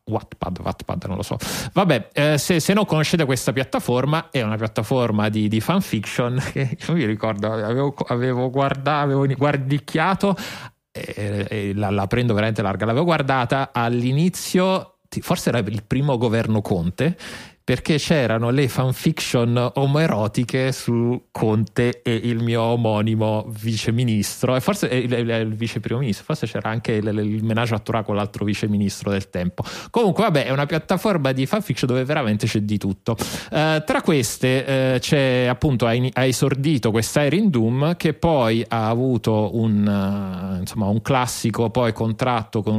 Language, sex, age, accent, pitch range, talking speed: Italian, male, 30-49, native, 110-135 Hz, 160 wpm